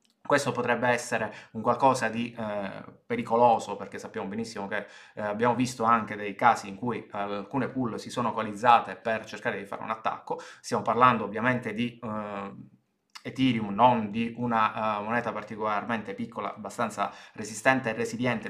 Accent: native